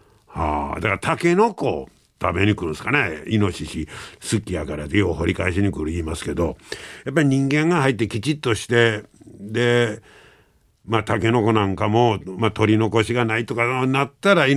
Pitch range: 100-135 Hz